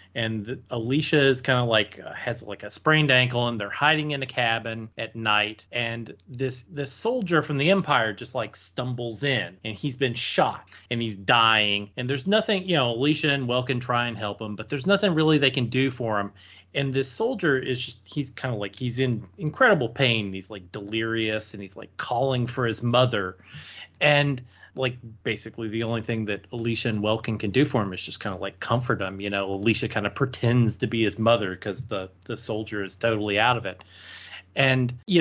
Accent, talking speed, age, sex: American, 210 wpm, 30-49, male